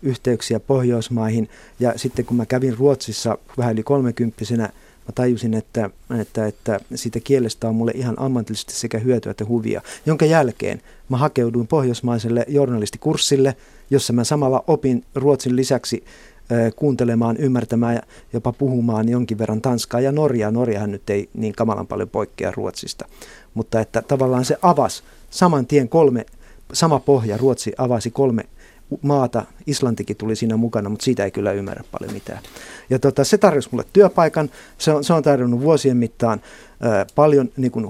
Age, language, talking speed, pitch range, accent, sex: 50-69, Finnish, 150 wpm, 115-135 Hz, native, male